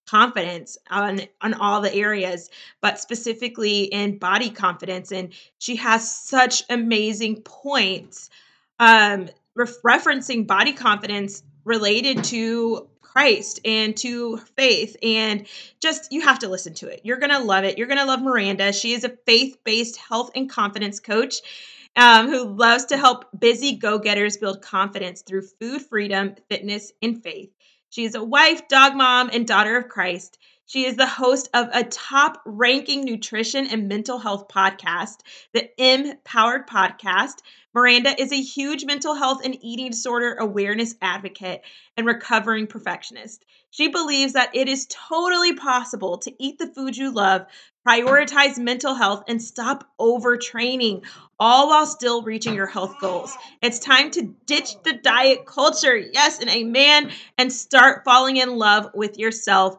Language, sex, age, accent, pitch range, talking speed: English, female, 20-39, American, 205-265 Hz, 150 wpm